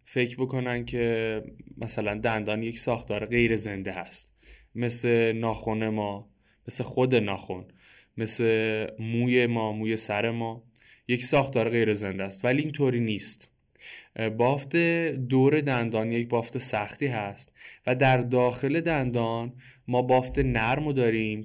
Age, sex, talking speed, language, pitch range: 20-39, male, 125 wpm, Persian, 110-130 Hz